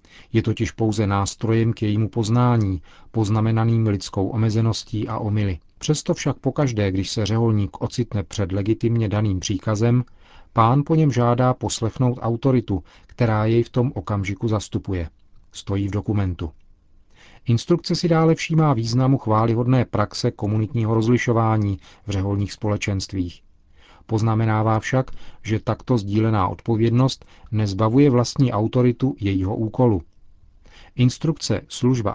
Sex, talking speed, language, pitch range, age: male, 120 wpm, Czech, 100-120 Hz, 40-59